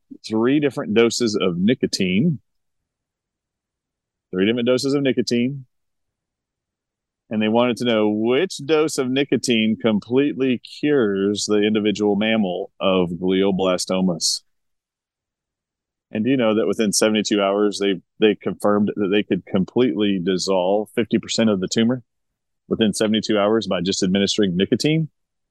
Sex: male